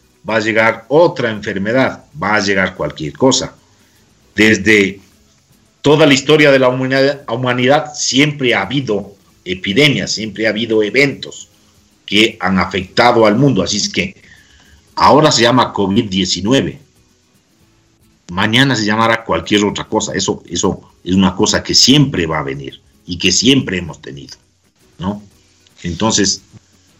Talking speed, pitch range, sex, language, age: 135 wpm, 95-130 Hz, male, Spanish, 50-69